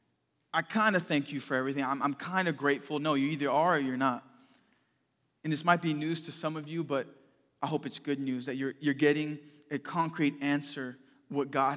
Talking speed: 220 wpm